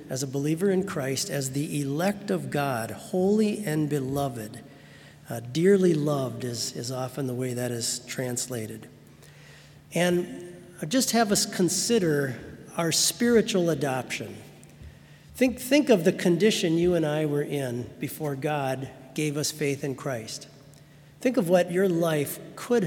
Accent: American